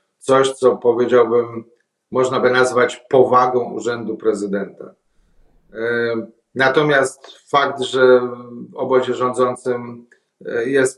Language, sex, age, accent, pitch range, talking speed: Polish, male, 40-59, native, 120-150 Hz, 85 wpm